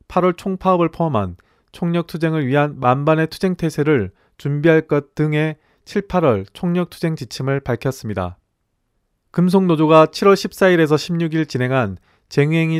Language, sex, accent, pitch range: Korean, male, native, 120-165 Hz